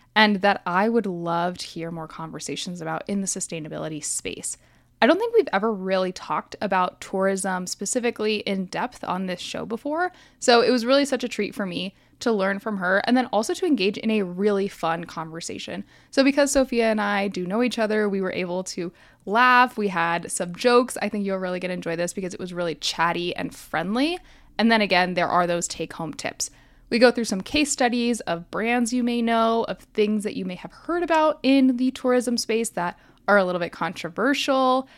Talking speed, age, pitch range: 210 wpm, 10-29, 185-240 Hz